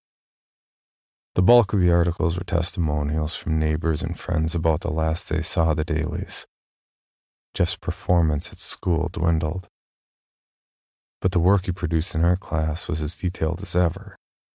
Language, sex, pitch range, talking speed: English, male, 80-95 Hz, 150 wpm